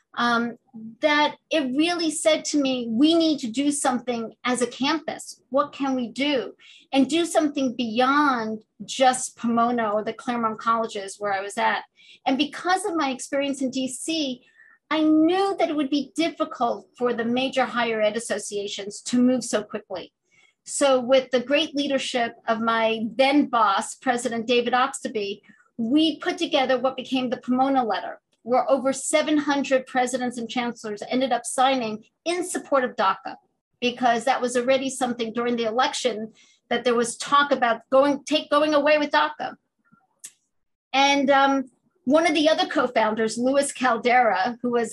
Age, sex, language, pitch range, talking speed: 50-69, female, English, 230-285 Hz, 160 wpm